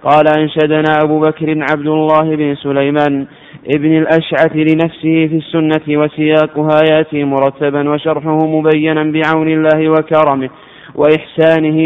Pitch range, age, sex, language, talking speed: 145-160 Hz, 20-39, male, Arabic, 110 wpm